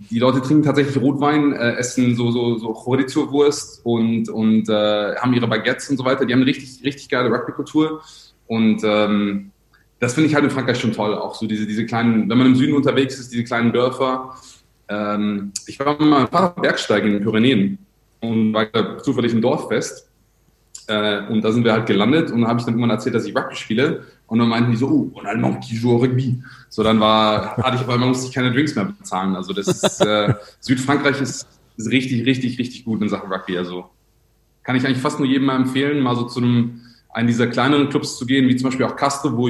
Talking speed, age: 220 wpm, 20-39